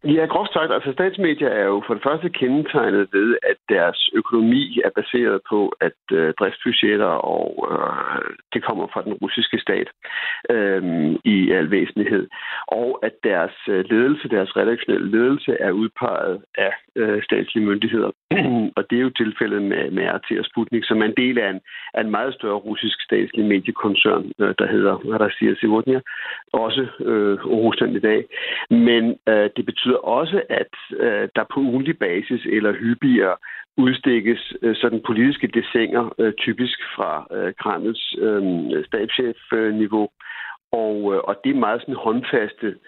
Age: 60-79